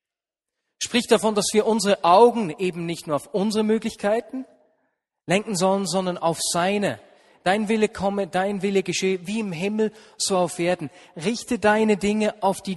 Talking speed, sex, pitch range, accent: 160 wpm, male, 170-215 Hz, German